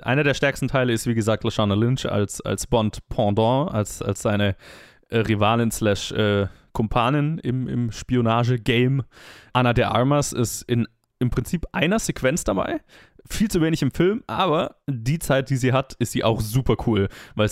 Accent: German